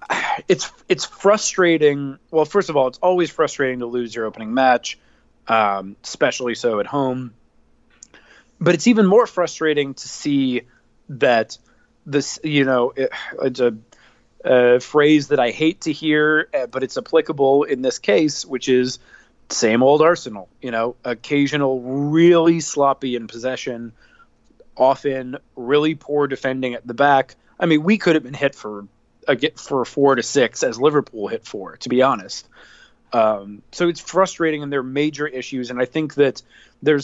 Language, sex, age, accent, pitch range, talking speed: English, male, 30-49, American, 125-155 Hz, 160 wpm